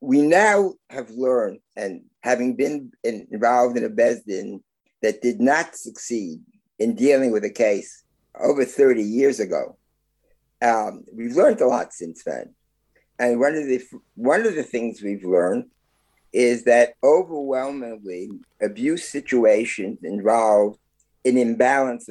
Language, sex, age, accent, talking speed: English, male, 50-69, American, 135 wpm